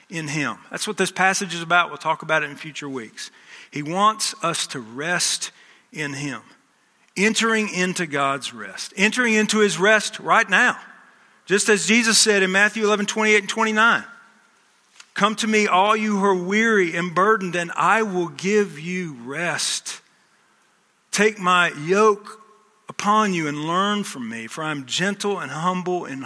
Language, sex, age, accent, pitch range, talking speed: English, male, 50-69, American, 155-205 Hz, 175 wpm